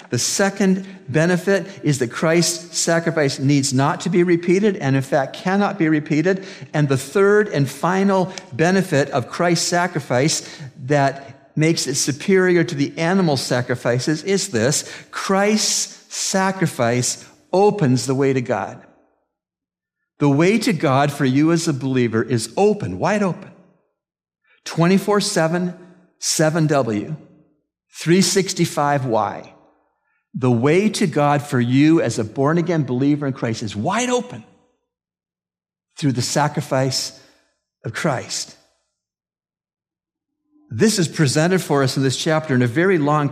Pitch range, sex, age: 135-180 Hz, male, 50-69